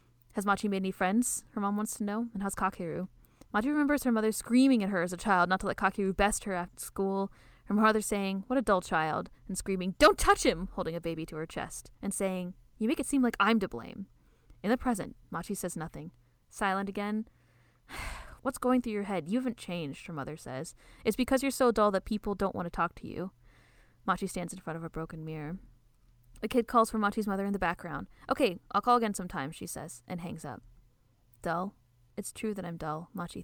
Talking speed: 225 wpm